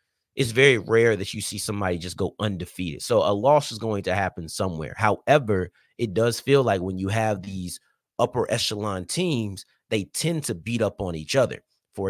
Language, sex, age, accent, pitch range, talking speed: English, male, 30-49, American, 95-130 Hz, 195 wpm